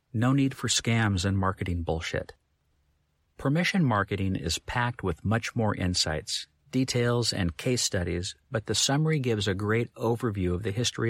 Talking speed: 155 wpm